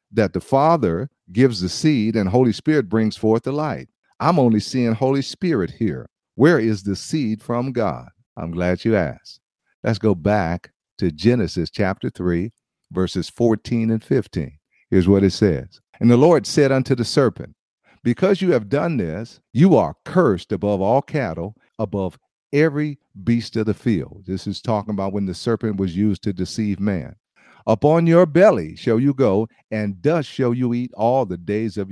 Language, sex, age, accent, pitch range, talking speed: English, male, 50-69, American, 100-130 Hz, 180 wpm